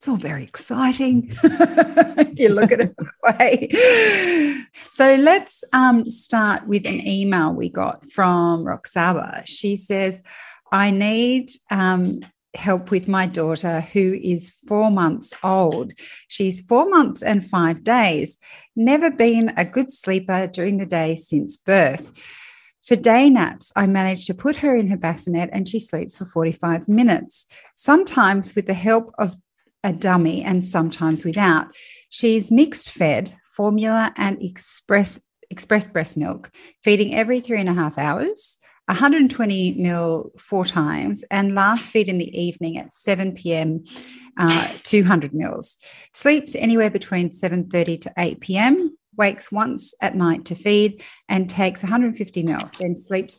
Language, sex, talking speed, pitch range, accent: English, female, 145 wpm, 180-250 Hz, Australian